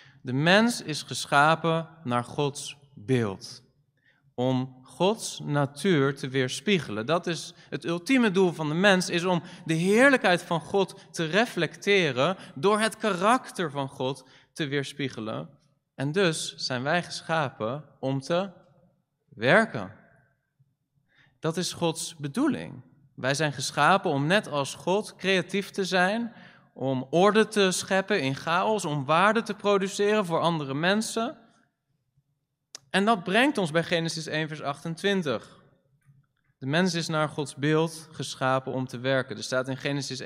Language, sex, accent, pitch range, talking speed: Dutch, male, Dutch, 135-185 Hz, 140 wpm